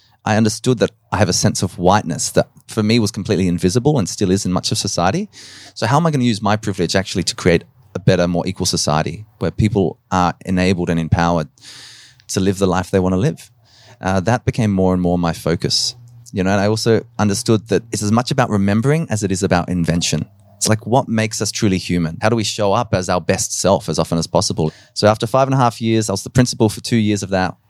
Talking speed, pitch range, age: 245 wpm, 95-115 Hz, 20-39